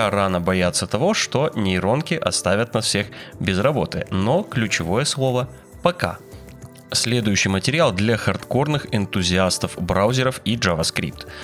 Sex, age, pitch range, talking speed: male, 20-39, 95-135 Hz, 115 wpm